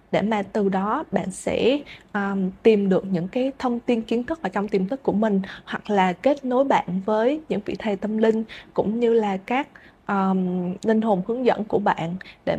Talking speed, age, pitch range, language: 210 wpm, 20-39, 190-225 Hz, Vietnamese